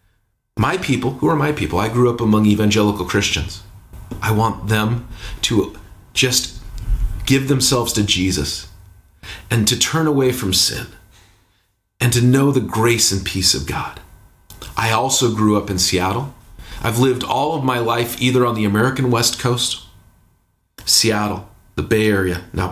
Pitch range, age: 100-125 Hz, 40-59